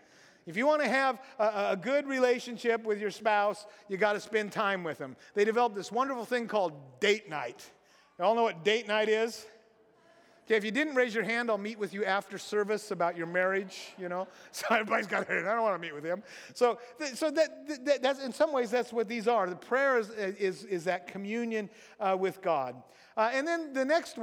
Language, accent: English, American